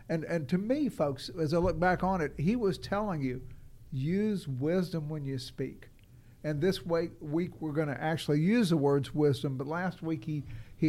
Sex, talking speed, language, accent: male, 200 wpm, English, American